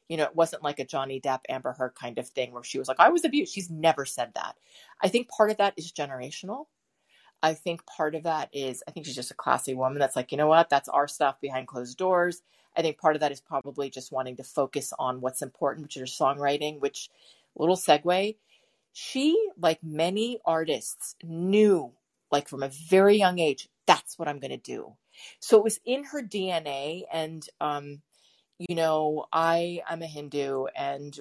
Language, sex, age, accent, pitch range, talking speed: English, female, 40-59, American, 135-180 Hz, 210 wpm